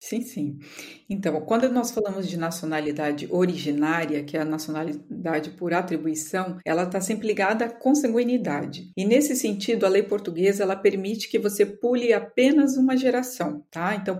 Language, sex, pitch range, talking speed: Portuguese, female, 170-230 Hz, 155 wpm